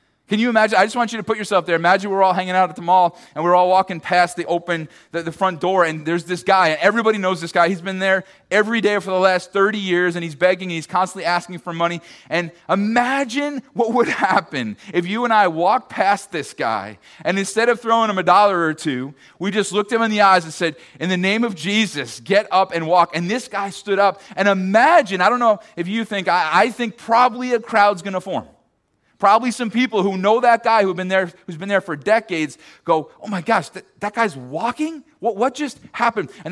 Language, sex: English, male